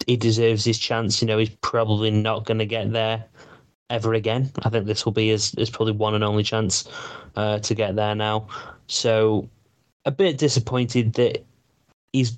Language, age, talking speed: English, 20-39, 185 wpm